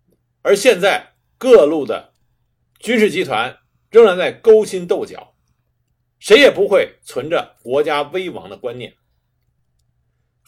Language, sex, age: Chinese, male, 50-69